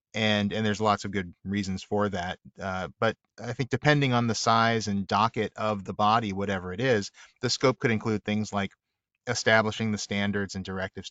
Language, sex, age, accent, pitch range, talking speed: English, male, 30-49, American, 95-110 Hz, 195 wpm